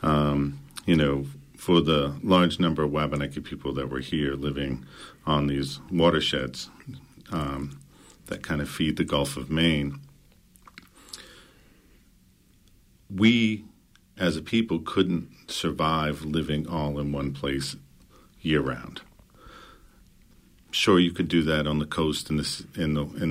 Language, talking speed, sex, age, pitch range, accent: English, 125 wpm, male, 50-69, 70-80 Hz, American